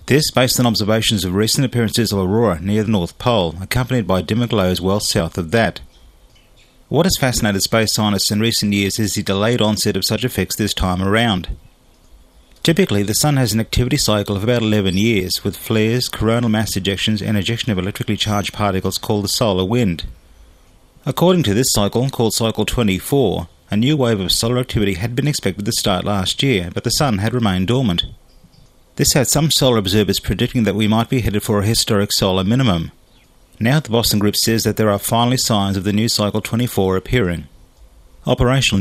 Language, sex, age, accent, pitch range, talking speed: English, male, 30-49, Australian, 95-115 Hz, 190 wpm